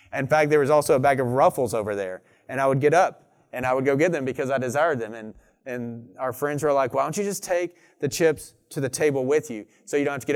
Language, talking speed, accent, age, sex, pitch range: English, 290 wpm, American, 30-49, male, 120-150 Hz